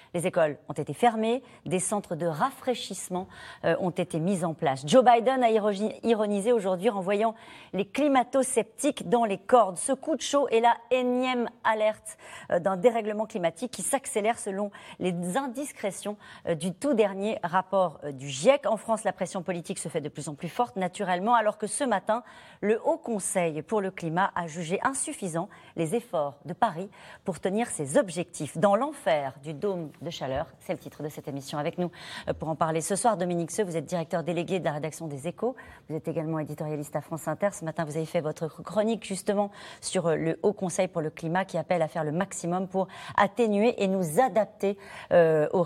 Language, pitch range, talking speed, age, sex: French, 165-225 Hz, 200 wpm, 40-59, female